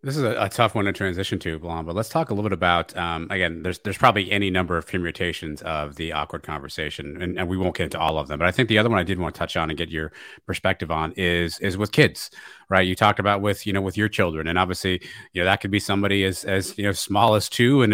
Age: 30-49